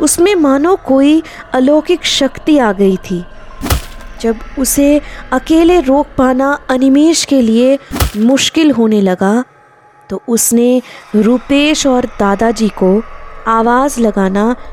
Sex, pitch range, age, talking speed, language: female, 215-275 Hz, 20-39, 110 wpm, Hindi